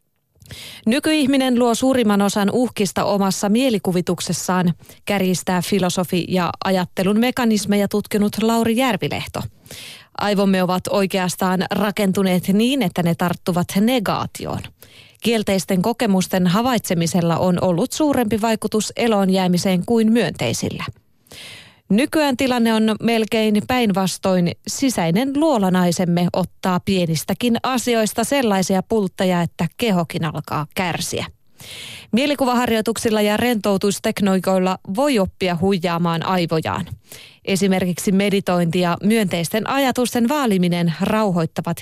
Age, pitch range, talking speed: 30-49, 180-230 Hz, 95 wpm